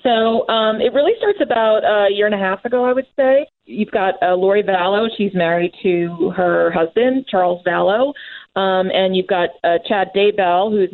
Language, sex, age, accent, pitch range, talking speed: English, female, 30-49, American, 175-210 Hz, 190 wpm